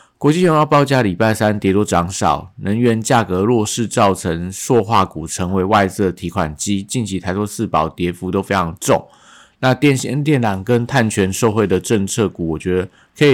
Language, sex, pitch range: Chinese, male, 95-115 Hz